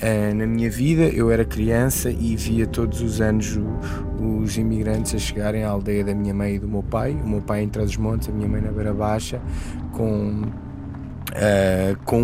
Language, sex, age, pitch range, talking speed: Portuguese, male, 20-39, 105-125 Hz, 185 wpm